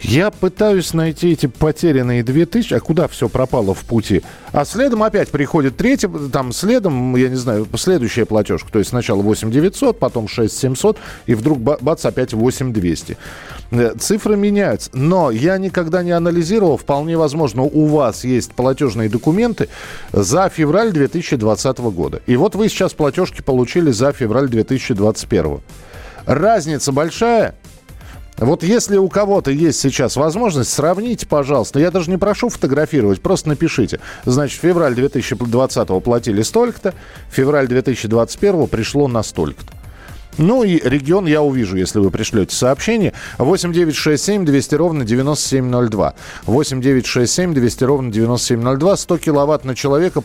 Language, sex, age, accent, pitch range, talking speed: Russian, male, 40-59, native, 115-165 Hz, 130 wpm